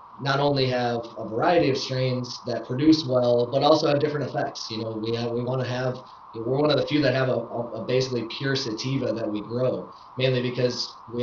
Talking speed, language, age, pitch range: 225 wpm, English, 20-39, 115-130 Hz